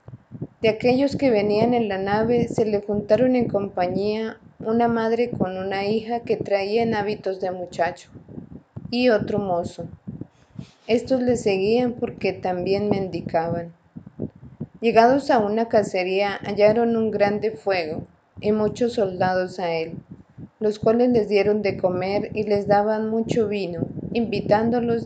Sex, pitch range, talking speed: female, 185-225 Hz, 135 wpm